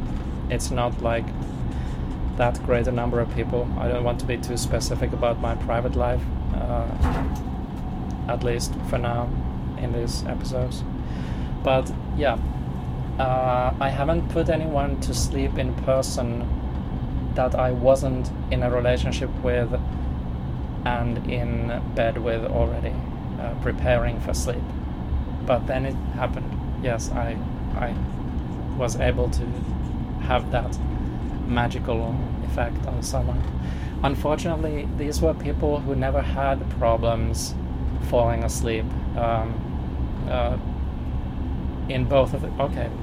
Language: English